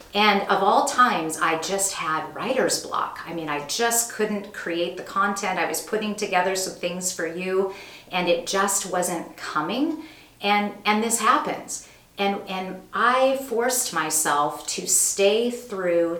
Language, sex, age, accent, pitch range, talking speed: English, female, 40-59, American, 170-205 Hz, 155 wpm